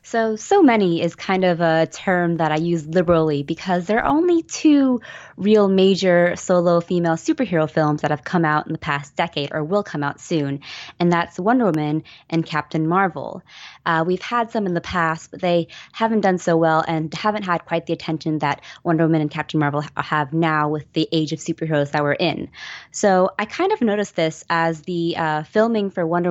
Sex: female